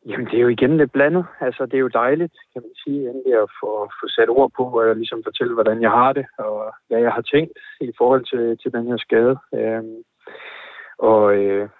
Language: Danish